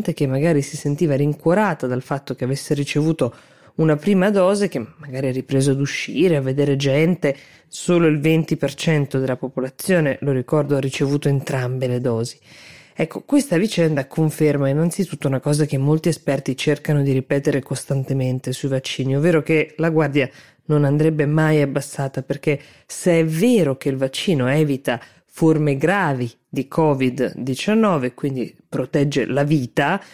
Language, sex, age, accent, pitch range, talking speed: Italian, female, 20-39, native, 135-160 Hz, 145 wpm